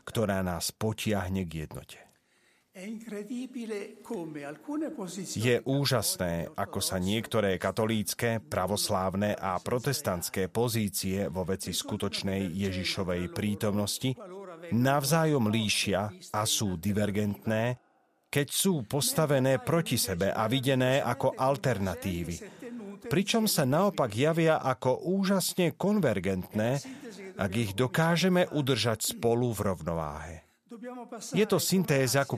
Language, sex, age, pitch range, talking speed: Slovak, male, 40-59, 100-150 Hz, 95 wpm